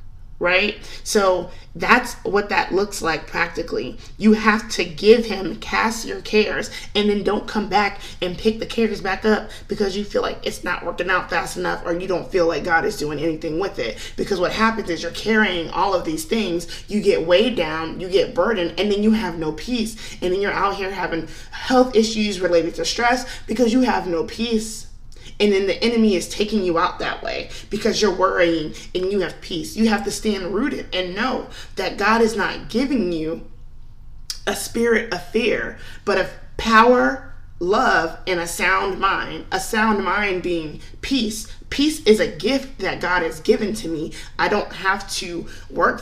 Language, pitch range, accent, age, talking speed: English, 175-220 Hz, American, 20-39, 195 wpm